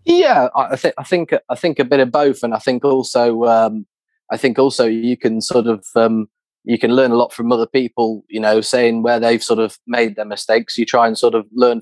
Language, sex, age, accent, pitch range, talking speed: English, male, 20-39, British, 110-120 Hz, 245 wpm